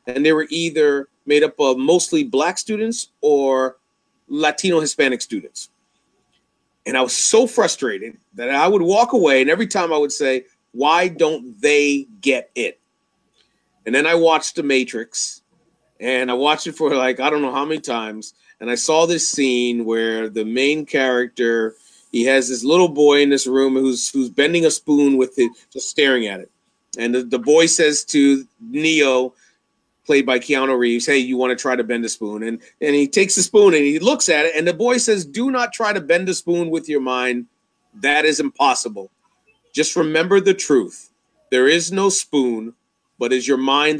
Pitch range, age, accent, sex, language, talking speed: 130-170 Hz, 40-59, American, male, English, 190 wpm